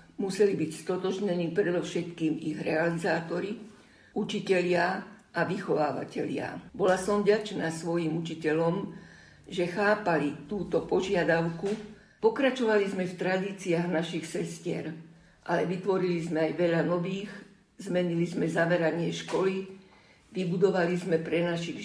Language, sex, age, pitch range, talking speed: Slovak, female, 50-69, 165-190 Hz, 105 wpm